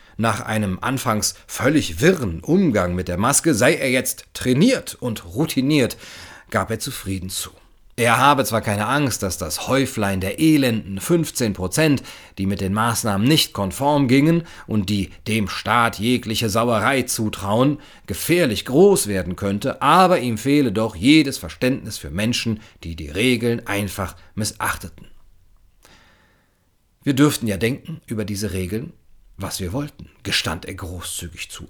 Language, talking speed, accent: German, 140 wpm, German